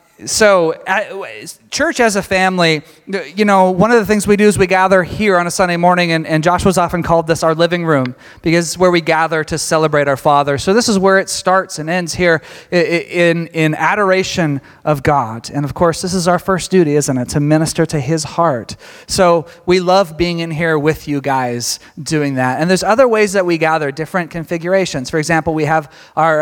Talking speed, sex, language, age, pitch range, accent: 215 wpm, male, English, 30-49, 150-180 Hz, American